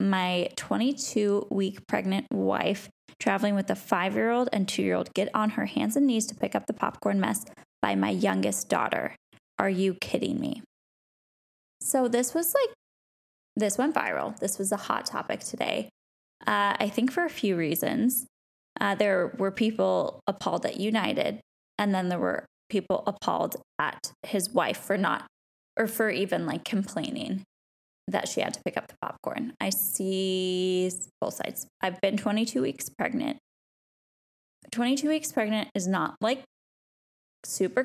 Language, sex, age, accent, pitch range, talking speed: English, female, 10-29, American, 190-245 Hz, 155 wpm